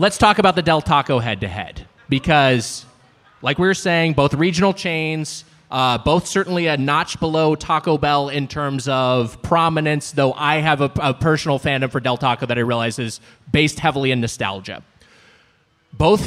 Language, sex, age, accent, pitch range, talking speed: English, male, 20-39, American, 135-185 Hz, 170 wpm